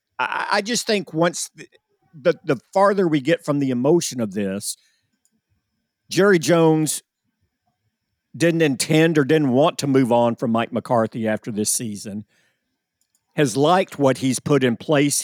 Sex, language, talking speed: male, English, 145 wpm